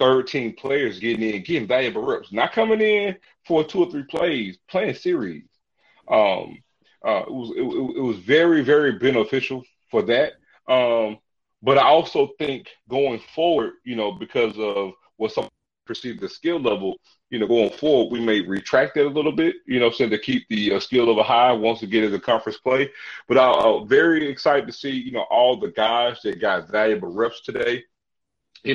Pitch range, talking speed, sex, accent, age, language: 110-145 Hz, 190 wpm, male, American, 30-49, English